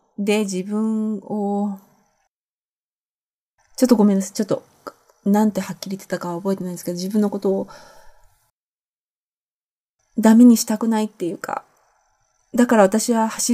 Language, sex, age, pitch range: Japanese, female, 20-39, 190-250 Hz